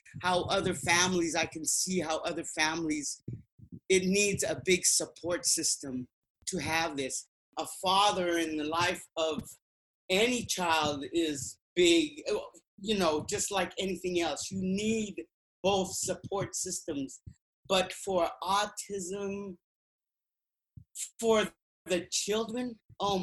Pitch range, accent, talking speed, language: 160-195 Hz, American, 120 wpm, English